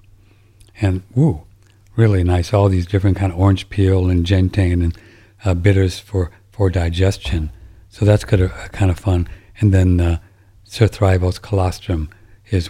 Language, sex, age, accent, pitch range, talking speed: English, male, 60-79, American, 90-105 Hz, 150 wpm